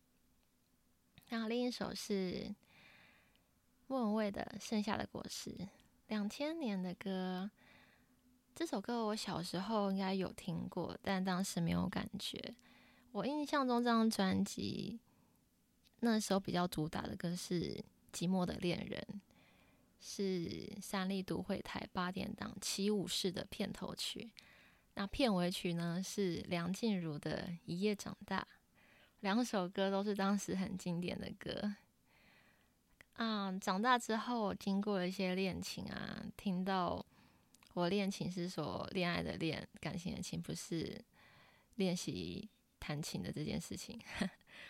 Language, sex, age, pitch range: Chinese, female, 20-39, 180-210 Hz